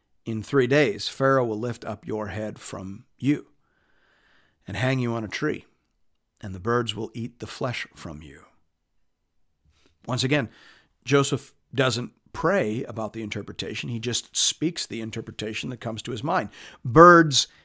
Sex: male